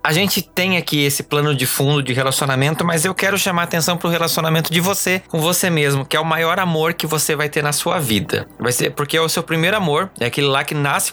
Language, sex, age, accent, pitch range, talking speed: Portuguese, male, 20-39, Brazilian, 130-165 Hz, 260 wpm